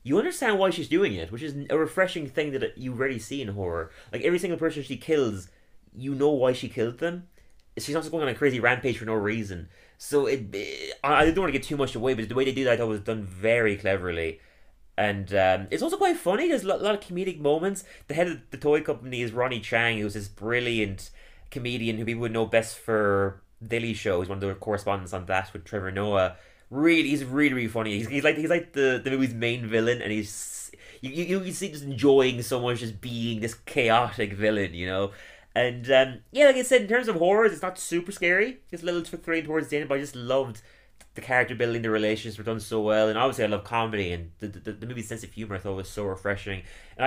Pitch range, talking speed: 100-145 Hz, 250 wpm